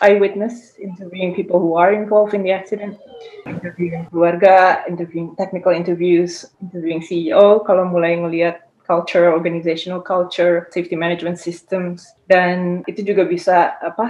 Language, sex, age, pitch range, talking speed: Indonesian, female, 20-39, 170-205 Hz, 130 wpm